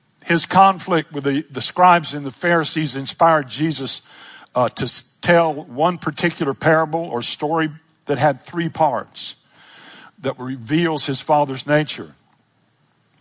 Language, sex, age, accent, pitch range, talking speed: English, male, 60-79, American, 120-155 Hz, 125 wpm